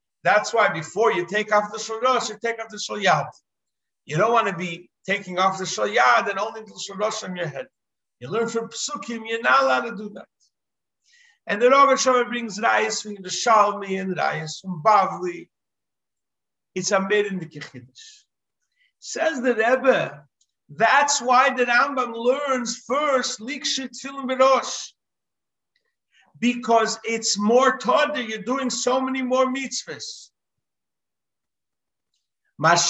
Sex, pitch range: male, 190-255 Hz